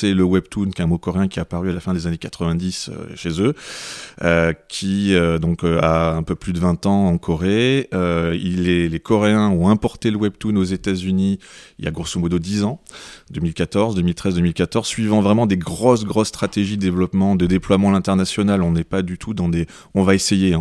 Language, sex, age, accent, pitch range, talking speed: French, male, 30-49, French, 85-100 Hz, 225 wpm